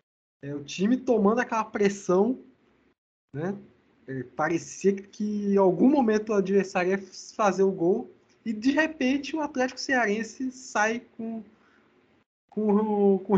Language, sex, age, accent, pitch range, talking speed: Portuguese, male, 20-39, Brazilian, 190-255 Hz, 140 wpm